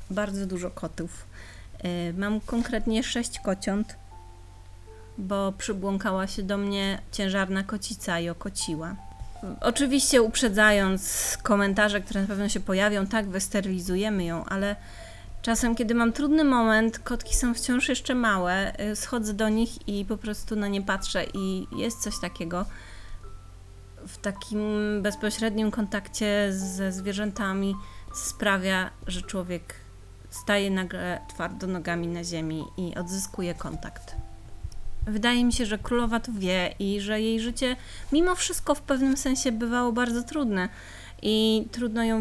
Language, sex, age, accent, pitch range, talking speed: Polish, female, 30-49, native, 170-220 Hz, 130 wpm